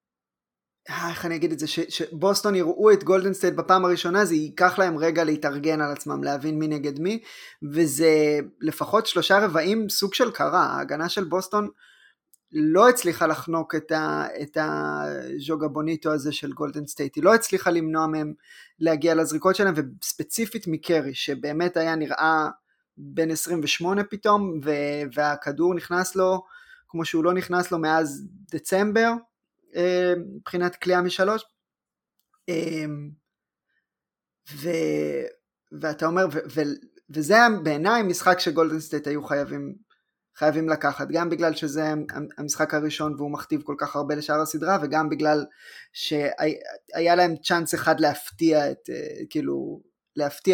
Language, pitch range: Hebrew, 150-185 Hz